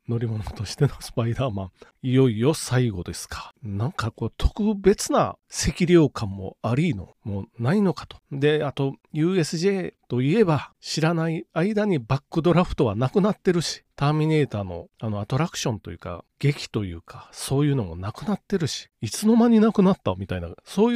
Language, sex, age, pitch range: Japanese, male, 40-59, 110-175 Hz